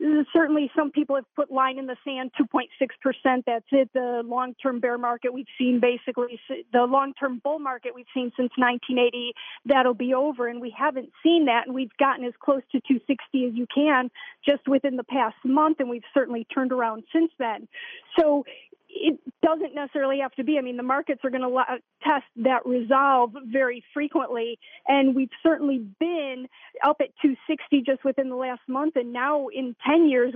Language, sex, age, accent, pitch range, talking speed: English, female, 40-59, American, 250-295 Hz, 185 wpm